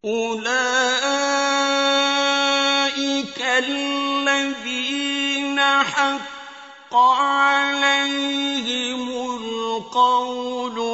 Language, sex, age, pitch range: Arabic, male, 50-69, 270-300 Hz